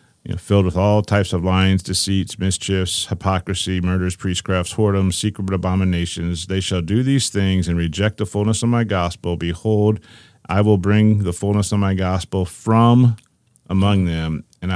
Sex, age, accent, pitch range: male, 40-59, American, 85-105 Hz